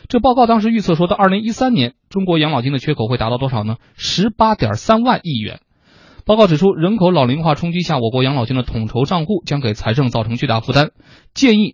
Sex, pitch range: male, 120-180 Hz